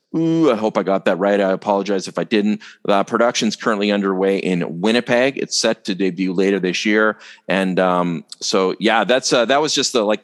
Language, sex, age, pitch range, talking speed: English, male, 40-59, 85-100 Hz, 210 wpm